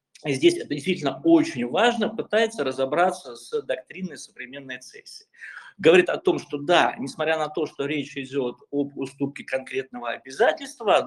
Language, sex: Russian, male